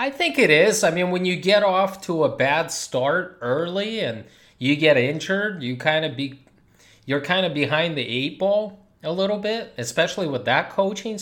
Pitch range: 135-180 Hz